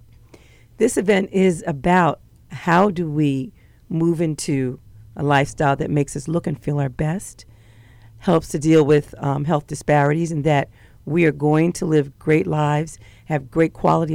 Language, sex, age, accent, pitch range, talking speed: English, female, 40-59, American, 135-170 Hz, 160 wpm